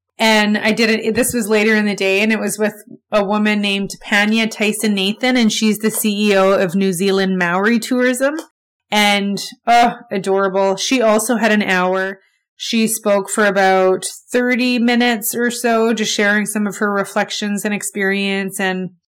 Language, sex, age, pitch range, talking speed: English, female, 20-39, 190-220 Hz, 170 wpm